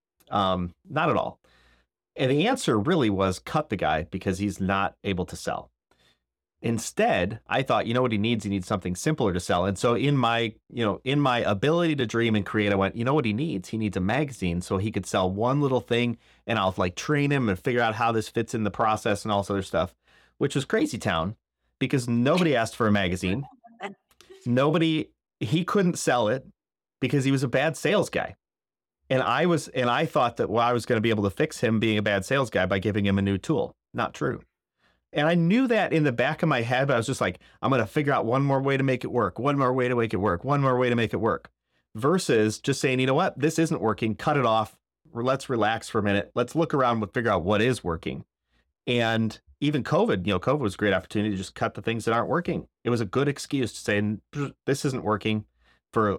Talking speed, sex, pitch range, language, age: 245 wpm, male, 100-135 Hz, English, 30-49